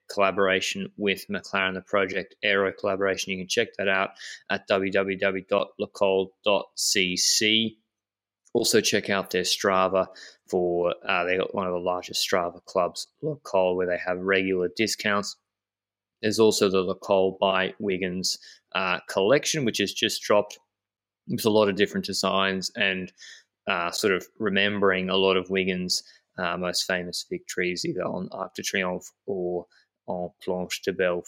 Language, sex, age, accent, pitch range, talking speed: English, male, 20-39, Australian, 95-110 Hz, 145 wpm